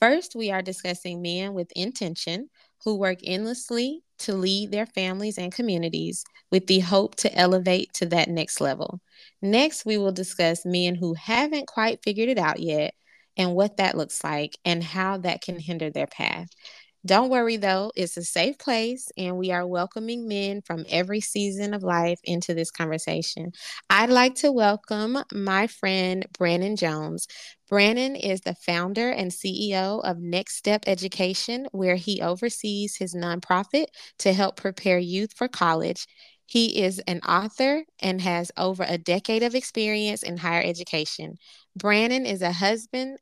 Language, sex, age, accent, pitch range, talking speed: English, female, 20-39, American, 175-220 Hz, 160 wpm